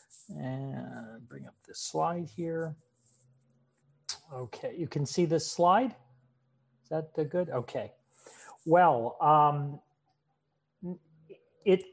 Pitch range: 130-170 Hz